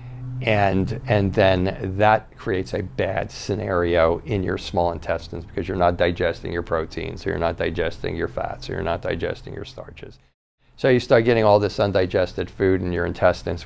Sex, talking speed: male, 190 wpm